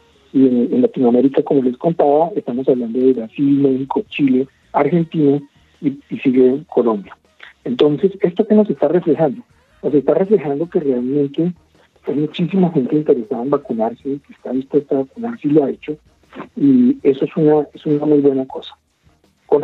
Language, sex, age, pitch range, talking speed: Spanish, male, 50-69, 130-165 Hz, 160 wpm